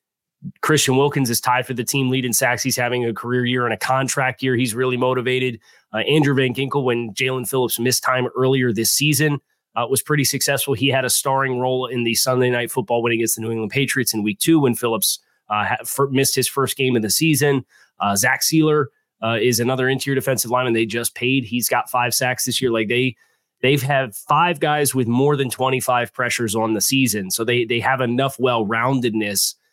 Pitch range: 115-135 Hz